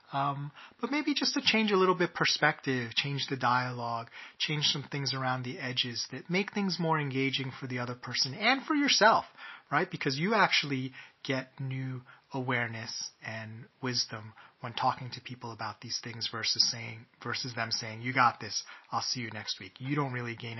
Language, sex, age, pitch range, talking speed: English, male, 30-49, 120-175 Hz, 185 wpm